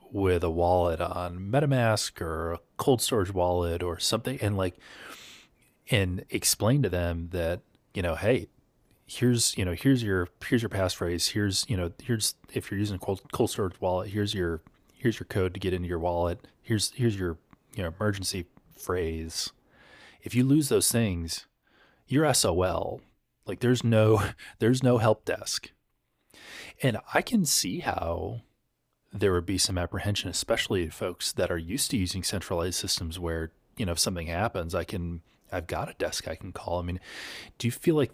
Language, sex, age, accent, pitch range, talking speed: English, male, 30-49, American, 90-110 Hz, 180 wpm